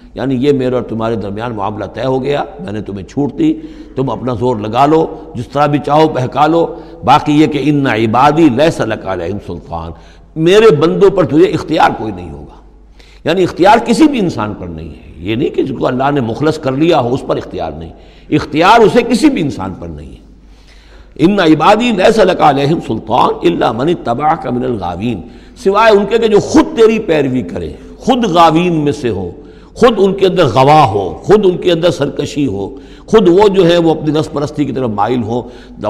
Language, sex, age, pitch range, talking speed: Urdu, male, 60-79, 110-165 Hz, 205 wpm